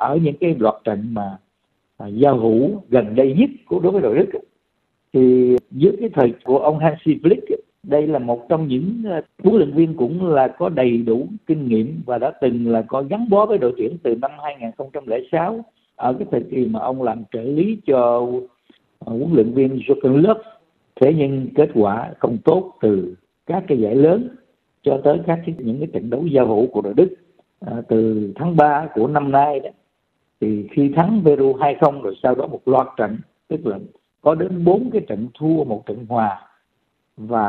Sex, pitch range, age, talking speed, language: male, 120-155 Hz, 60-79, 200 wpm, Vietnamese